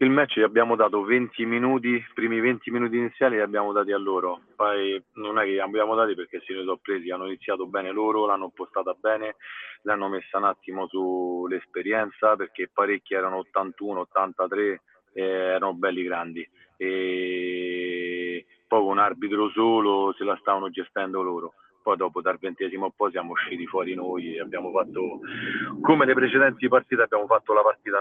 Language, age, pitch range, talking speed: Italian, 40-59, 95-160 Hz, 170 wpm